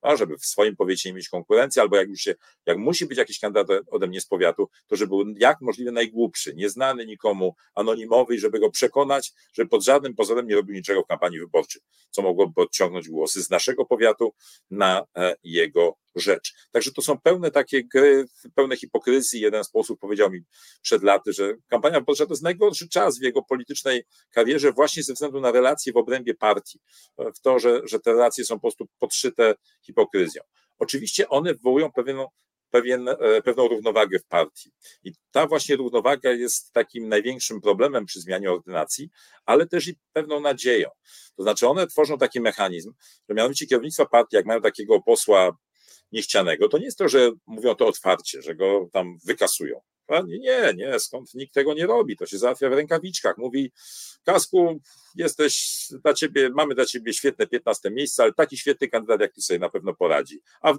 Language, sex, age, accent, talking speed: Polish, male, 40-59, native, 185 wpm